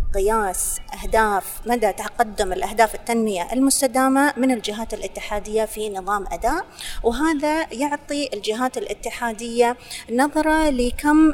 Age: 30-49